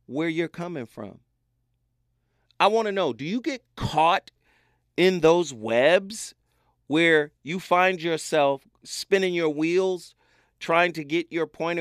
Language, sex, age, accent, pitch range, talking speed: English, male, 40-59, American, 120-195 Hz, 135 wpm